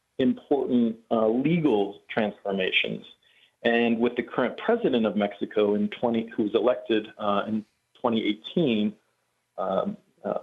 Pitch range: 110-135 Hz